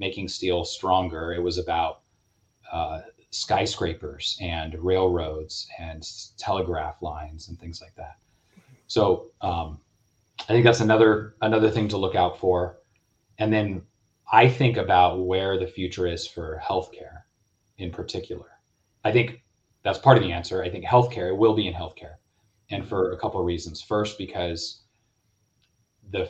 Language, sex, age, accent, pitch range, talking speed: English, male, 30-49, American, 90-110 Hz, 150 wpm